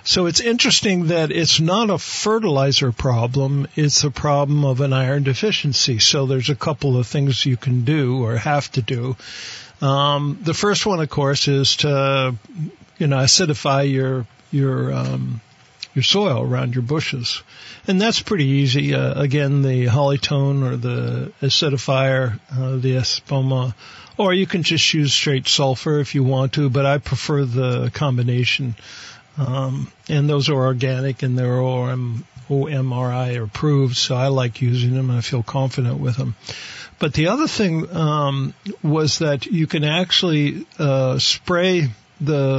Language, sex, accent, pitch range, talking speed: English, male, American, 130-150 Hz, 160 wpm